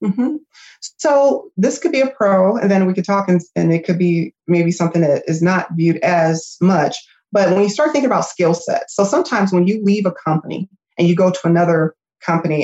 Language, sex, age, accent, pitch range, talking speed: English, female, 30-49, American, 165-200 Hz, 220 wpm